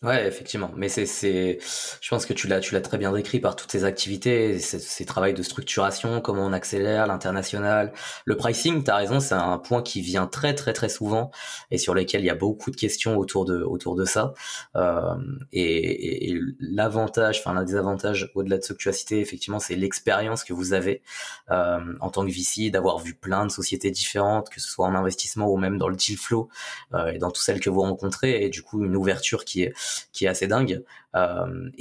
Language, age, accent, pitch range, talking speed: French, 20-39, French, 95-115 Hz, 225 wpm